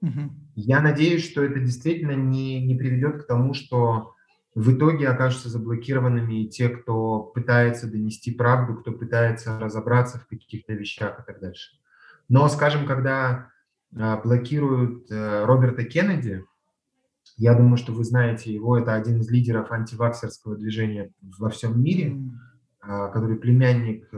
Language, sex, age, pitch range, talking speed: Russian, male, 20-39, 110-130 Hz, 130 wpm